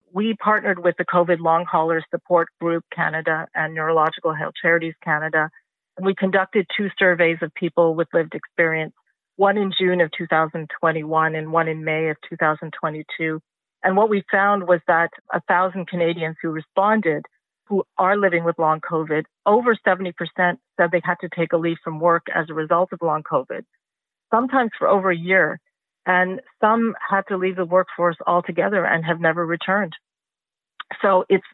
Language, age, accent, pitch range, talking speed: English, 40-59, American, 165-200 Hz, 170 wpm